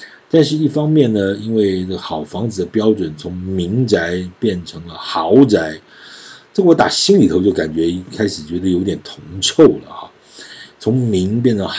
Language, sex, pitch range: Chinese, male, 85-125 Hz